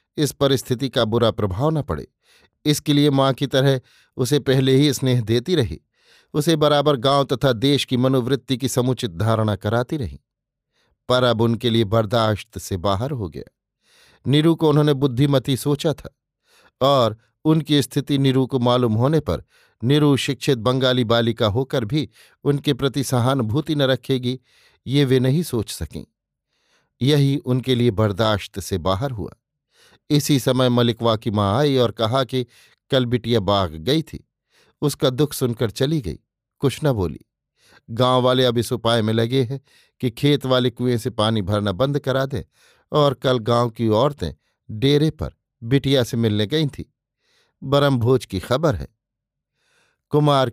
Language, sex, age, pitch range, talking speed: Hindi, male, 50-69, 115-140 Hz, 160 wpm